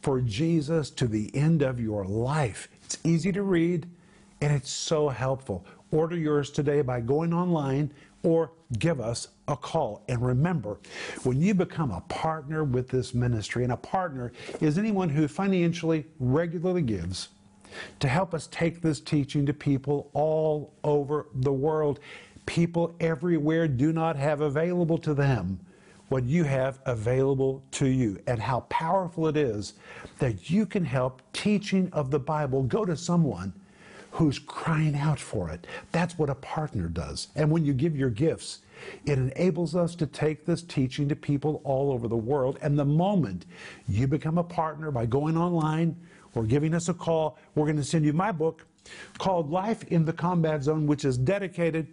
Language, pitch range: English, 135-170 Hz